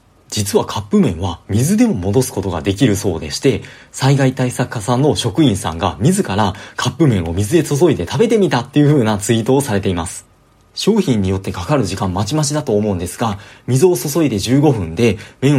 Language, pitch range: Japanese, 100-150 Hz